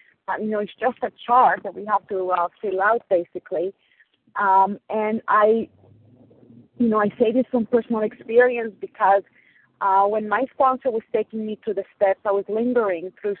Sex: female